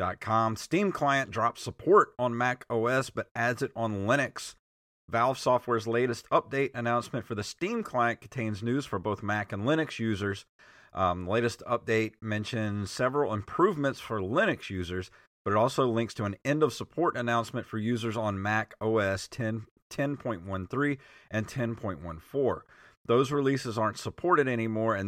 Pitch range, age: 95-120 Hz, 40-59